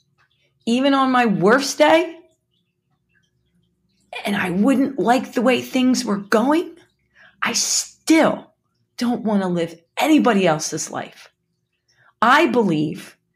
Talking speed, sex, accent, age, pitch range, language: 110 wpm, female, American, 40-59, 180-270 Hz, English